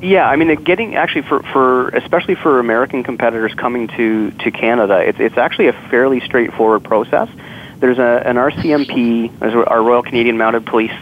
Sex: male